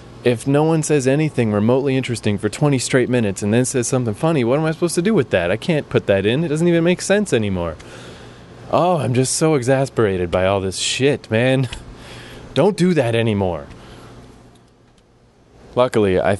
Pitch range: 95-125 Hz